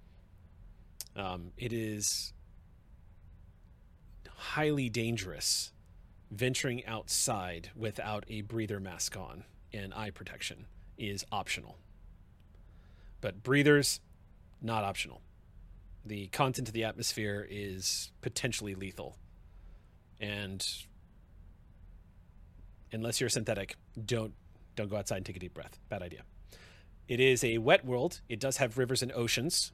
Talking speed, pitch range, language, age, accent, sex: 110 wpm, 90-115 Hz, English, 30-49, American, male